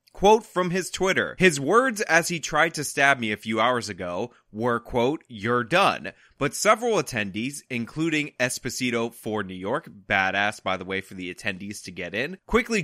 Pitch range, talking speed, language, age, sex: 120-180 Hz, 180 wpm, English, 20-39, male